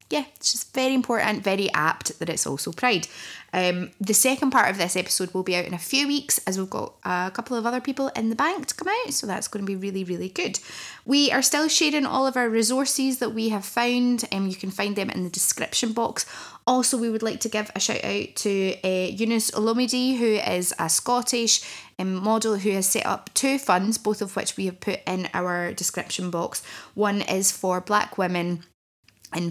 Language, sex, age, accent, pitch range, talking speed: English, female, 20-39, British, 180-230 Hz, 220 wpm